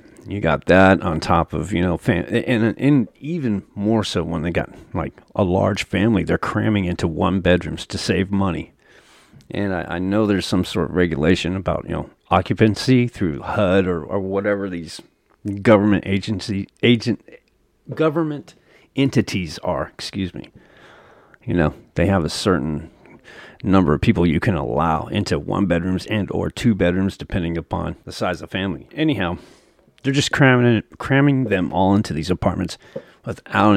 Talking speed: 160 wpm